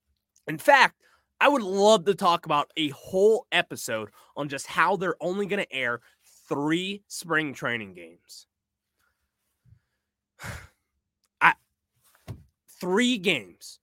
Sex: male